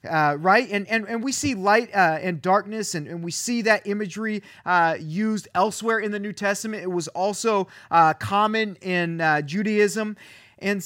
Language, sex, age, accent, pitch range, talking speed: English, male, 30-49, American, 175-230 Hz, 180 wpm